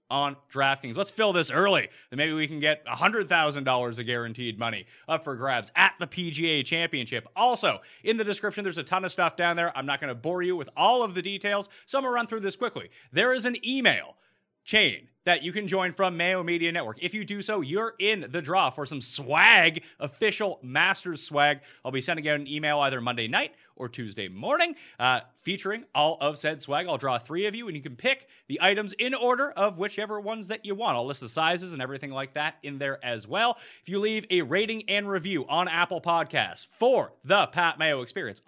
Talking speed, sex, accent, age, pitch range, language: 225 wpm, male, American, 30-49, 150-210 Hz, English